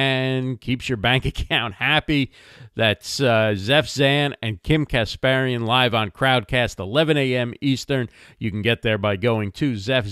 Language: English